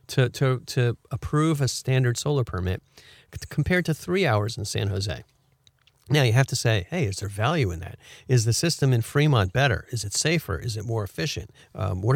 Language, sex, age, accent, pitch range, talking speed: English, male, 50-69, American, 115-150 Hz, 205 wpm